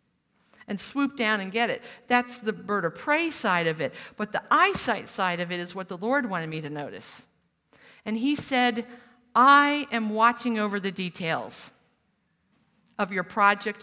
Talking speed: 175 wpm